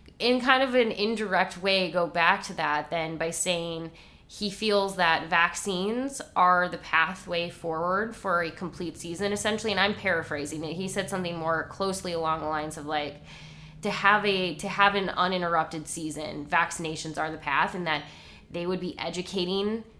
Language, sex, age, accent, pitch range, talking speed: English, female, 20-39, American, 165-215 Hz, 175 wpm